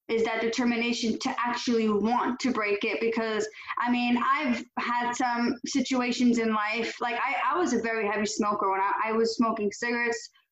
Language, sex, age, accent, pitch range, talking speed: English, female, 20-39, American, 230-270 Hz, 185 wpm